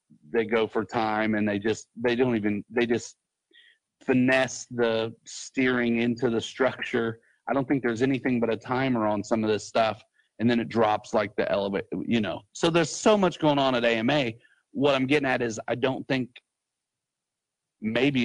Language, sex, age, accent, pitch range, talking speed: English, male, 40-59, American, 115-145 Hz, 185 wpm